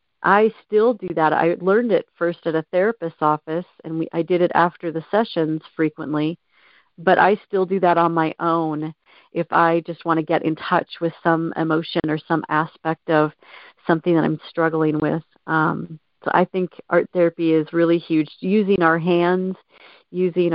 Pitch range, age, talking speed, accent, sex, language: 160-180 Hz, 40-59, 180 wpm, American, female, English